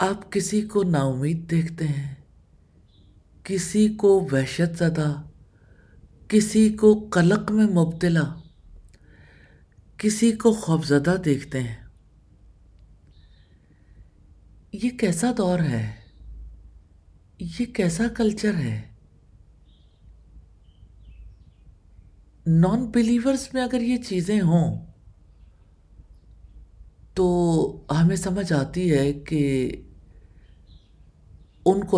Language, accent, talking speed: English, Indian, 75 wpm